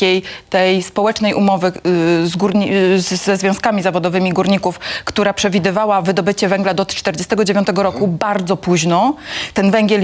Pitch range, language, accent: 205-260 Hz, Polish, native